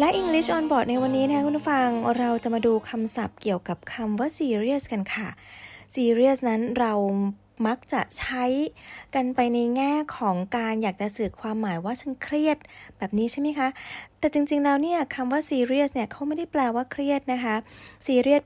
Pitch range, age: 205-265 Hz, 20-39